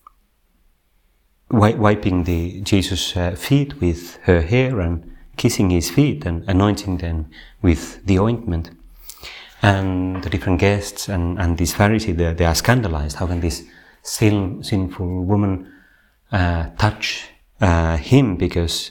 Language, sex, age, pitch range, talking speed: Finnish, male, 30-49, 85-105 Hz, 130 wpm